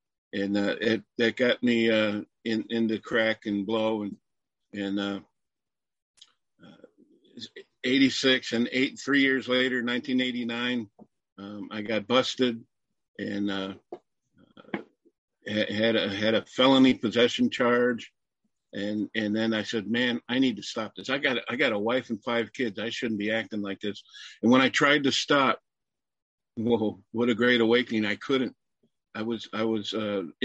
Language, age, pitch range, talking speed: English, 50-69, 110-130 Hz, 170 wpm